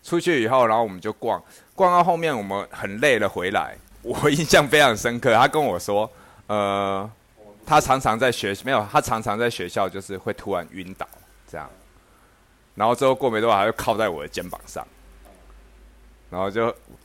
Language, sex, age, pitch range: Chinese, male, 20-39, 90-120 Hz